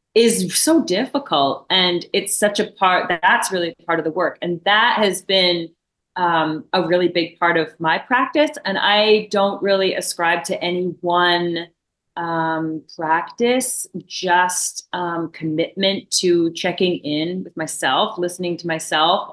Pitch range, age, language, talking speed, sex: 170-195 Hz, 30-49, English, 145 wpm, female